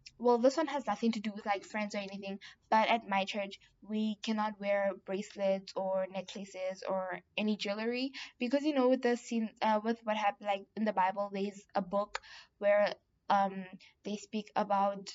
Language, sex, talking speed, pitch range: English, female, 185 wpm, 195-225 Hz